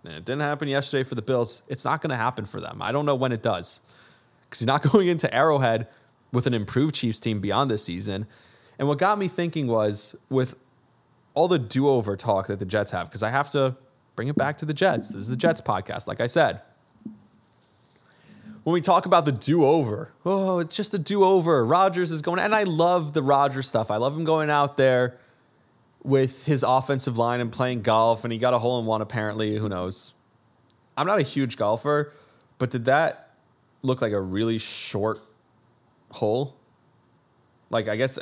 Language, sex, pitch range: English, male, 115-145 Hz